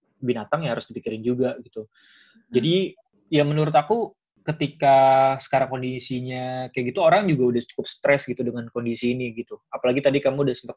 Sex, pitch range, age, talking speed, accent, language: male, 120-145 Hz, 20-39, 165 wpm, native, Indonesian